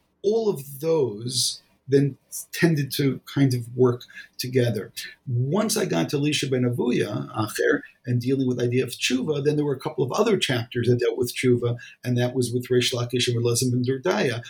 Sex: male